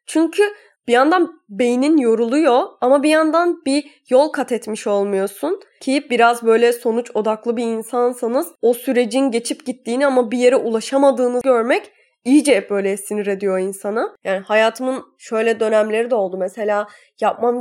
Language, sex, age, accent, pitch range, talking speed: Turkish, female, 10-29, native, 215-270 Hz, 145 wpm